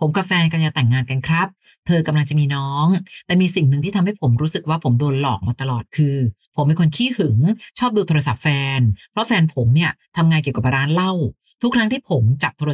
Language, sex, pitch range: Thai, female, 140-195 Hz